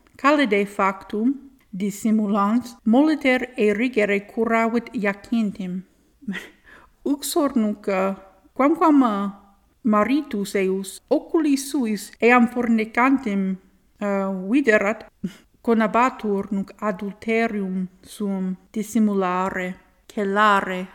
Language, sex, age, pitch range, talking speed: English, female, 50-69, 195-235 Hz, 70 wpm